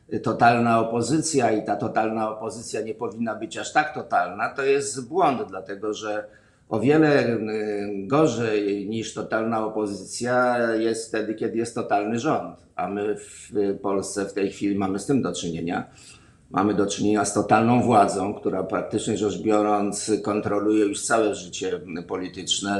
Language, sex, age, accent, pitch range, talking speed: Polish, male, 50-69, native, 105-130 Hz, 145 wpm